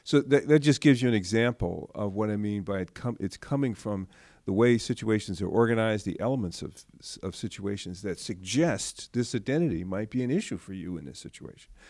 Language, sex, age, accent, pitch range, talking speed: English, male, 50-69, American, 100-130 Hz, 205 wpm